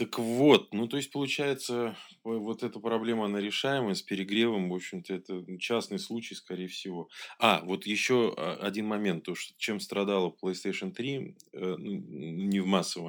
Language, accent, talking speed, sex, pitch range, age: Russian, native, 160 wpm, male, 85-110 Hz, 20-39